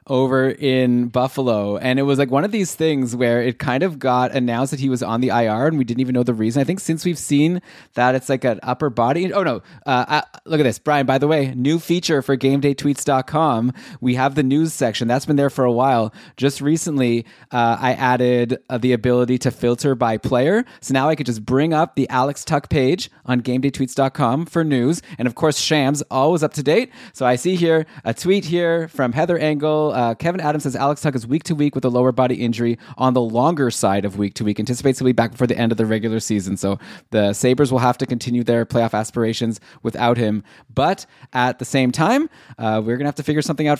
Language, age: English, 20-39